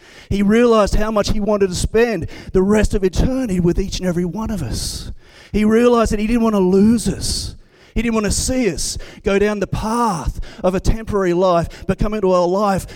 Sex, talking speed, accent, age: male, 220 wpm, Australian, 30-49